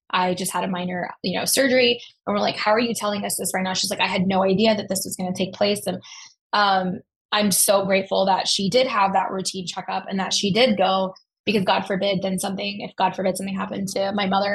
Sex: female